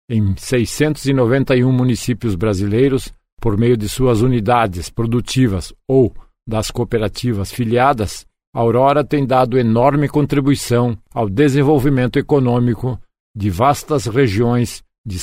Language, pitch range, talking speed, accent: Portuguese, 105-130 Hz, 105 wpm, Brazilian